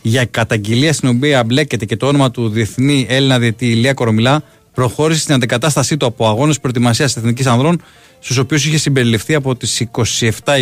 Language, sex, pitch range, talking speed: Greek, male, 110-135 Hz, 170 wpm